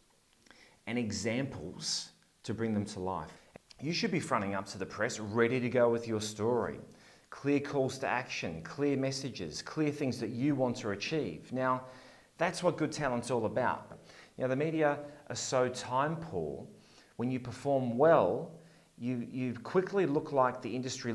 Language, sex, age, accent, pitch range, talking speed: English, male, 30-49, Australian, 105-130 Hz, 170 wpm